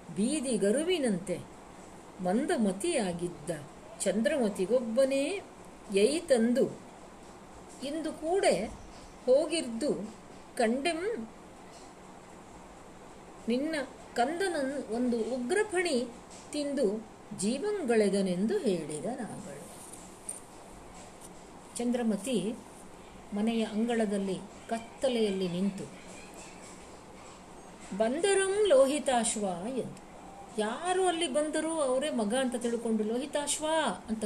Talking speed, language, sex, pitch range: 60 wpm, Kannada, female, 205-305 Hz